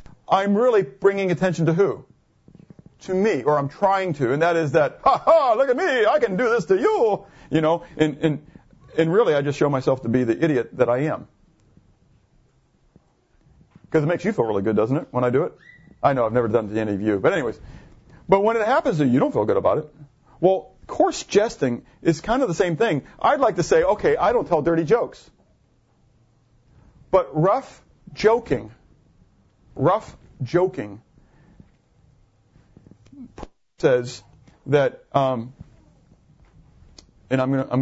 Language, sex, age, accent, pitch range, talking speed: English, male, 40-59, American, 125-170 Hz, 175 wpm